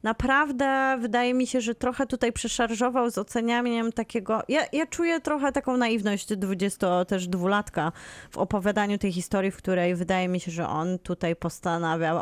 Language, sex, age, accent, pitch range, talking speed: Polish, female, 20-39, native, 190-235 Hz, 150 wpm